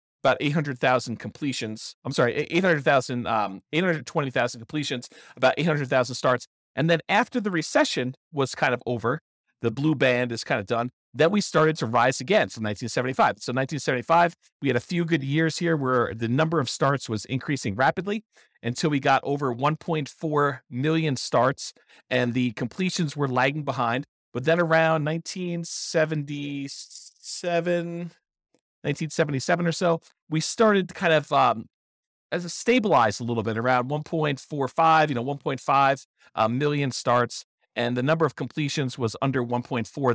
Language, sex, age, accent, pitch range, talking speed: English, male, 50-69, American, 125-160 Hz, 150 wpm